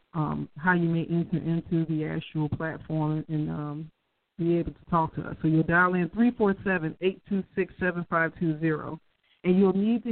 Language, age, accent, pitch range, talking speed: English, 40-59, American, 160-185 Hz, 155 wpm